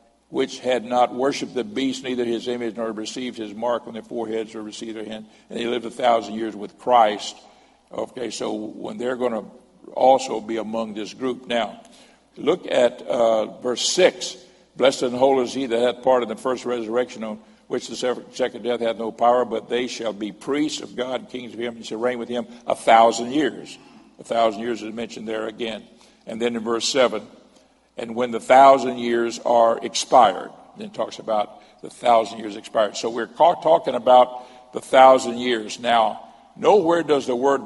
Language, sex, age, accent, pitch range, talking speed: English, male, 60-79, American, 115-125 Hz, 195 wpm